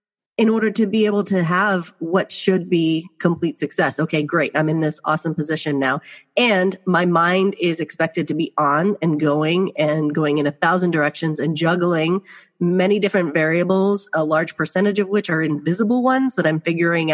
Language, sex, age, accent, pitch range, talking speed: English, female, 30-49, American, 160-210 Hz, 180 wpm